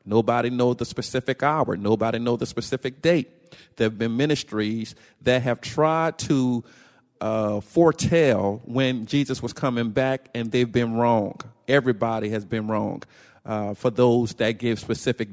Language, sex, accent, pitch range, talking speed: English, male, American, 115-135 Hz, 155 wpm